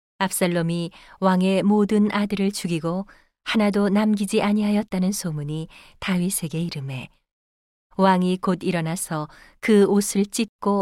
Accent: native